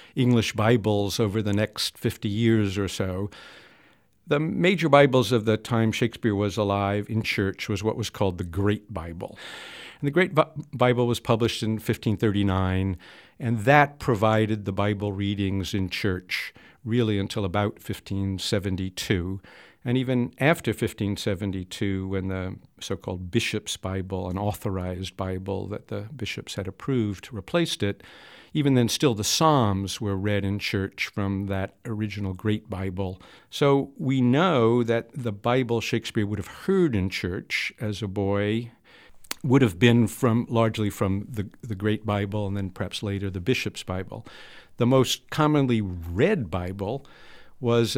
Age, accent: 50-69, American